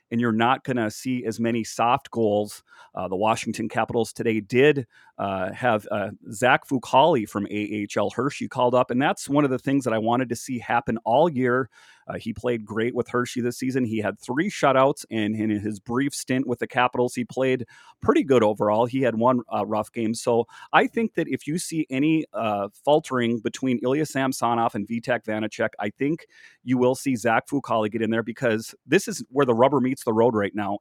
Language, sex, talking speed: English, male, 210 wpm